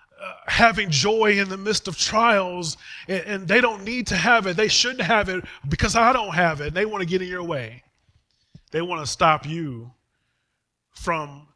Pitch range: 125-185 Hz